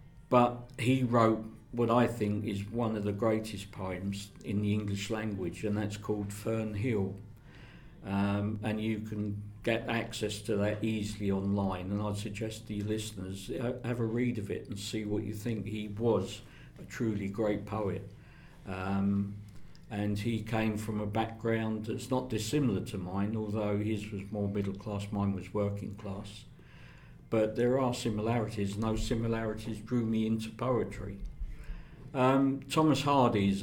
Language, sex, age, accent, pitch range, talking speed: English, male, 50-69, British, 100-115 Hz, 160 wpm